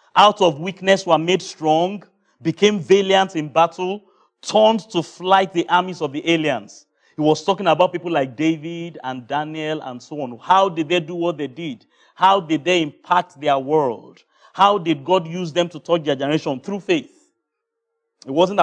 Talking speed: 180 wpm